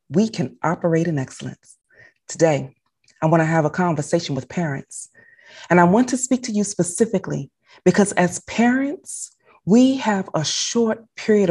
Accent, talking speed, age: American, 155 wpm, 30-49